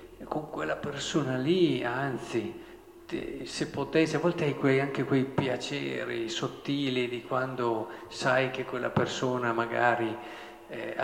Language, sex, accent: Italian, male, native